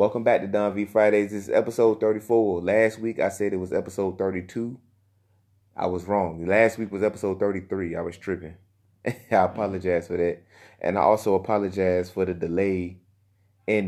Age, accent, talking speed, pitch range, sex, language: 30-49, American, 175 wpm, 95-105 Hz, male, English